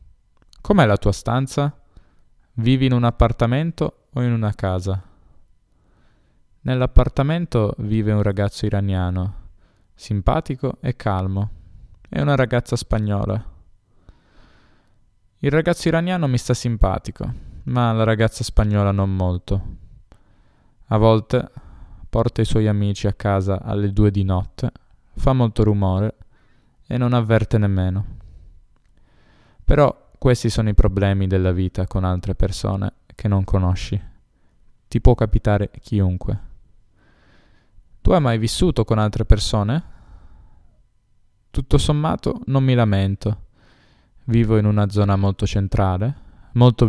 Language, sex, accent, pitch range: Italian, male, native, 95-115 Hz